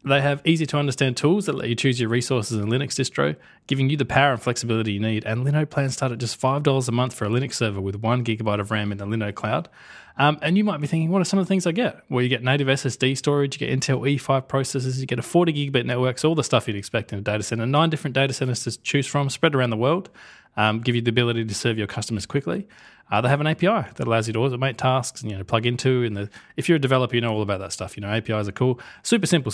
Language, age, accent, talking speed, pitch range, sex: English, 20-39, Australian, 280 wpm, 115-140 Hz, male